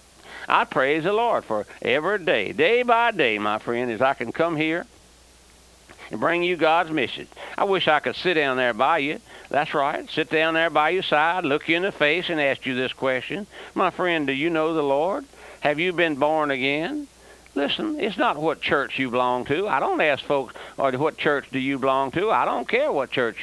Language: English